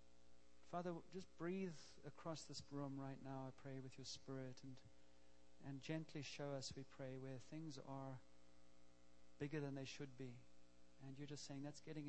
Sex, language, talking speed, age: male, English, 170 wpm, 40-59